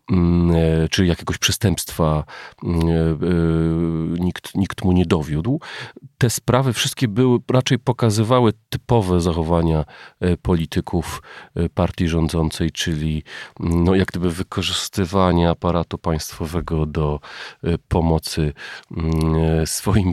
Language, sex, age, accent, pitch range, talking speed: Polish, male, 40-59, native, 85-100 Hz, 85 wpm